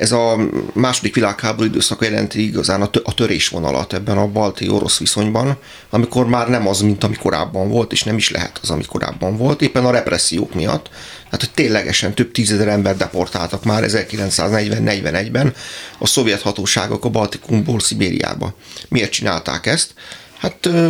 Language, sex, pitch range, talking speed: Hungarian, male, 100-120 Hz, 150 wpm